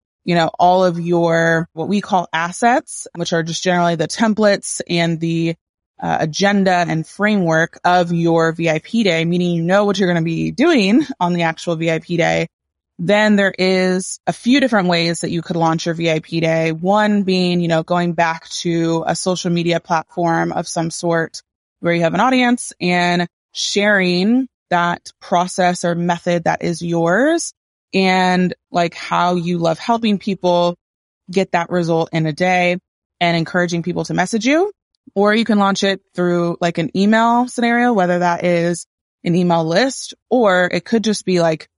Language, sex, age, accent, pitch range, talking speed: English, female, 20-39, American, 170-200 Hz, 175 wpm